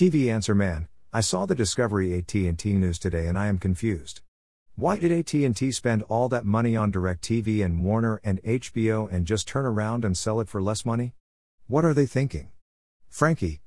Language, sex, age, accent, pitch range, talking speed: English, male, 50-69, American, 90-120 Hz, 185 wpm